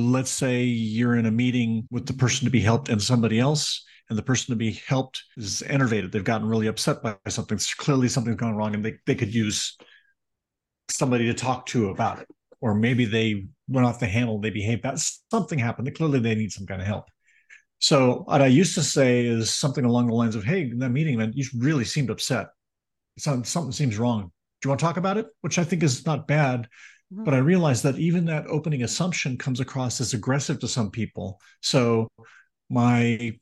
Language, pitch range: English, 120-155 Hz